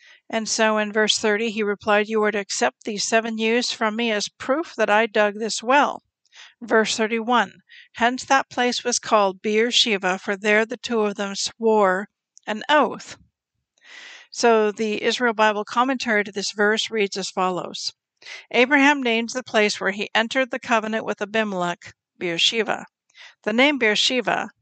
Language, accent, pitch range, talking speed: English, American, 205-240 Hz, 160 wpm